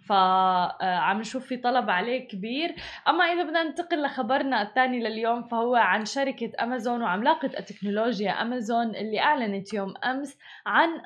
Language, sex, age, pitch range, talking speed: Arabic, female, 20-39, 220-275 Hz, 135 wpm